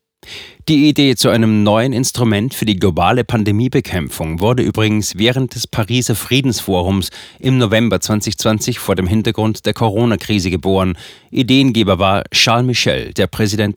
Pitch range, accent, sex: 95-120 Hz, German, male